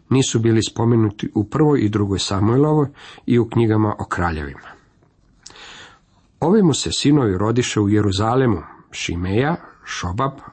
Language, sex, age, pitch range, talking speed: Croatian, male, 50-69, 105-140 Hz, 125 wpm